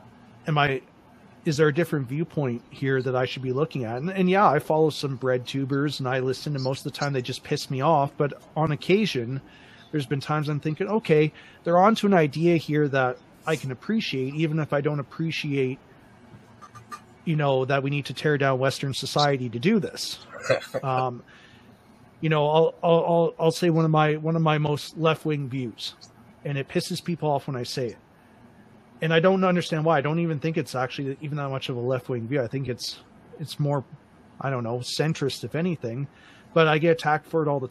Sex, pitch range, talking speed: male, 130-160 Hz, 215 wpm